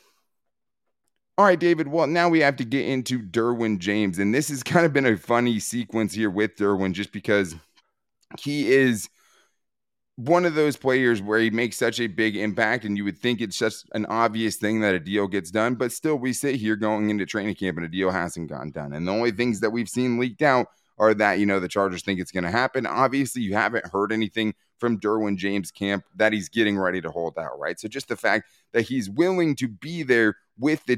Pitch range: 95-120 Hz